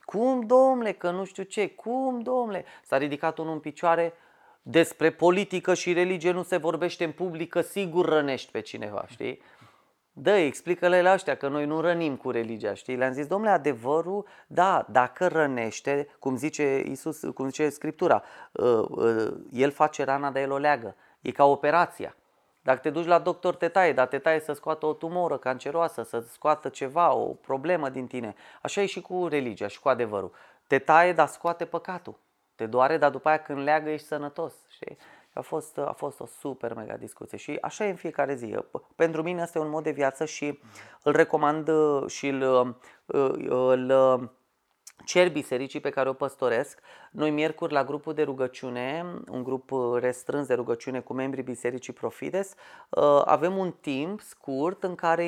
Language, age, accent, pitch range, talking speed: Romanian, 30-49, native, 135-175 Hz, 175 wpm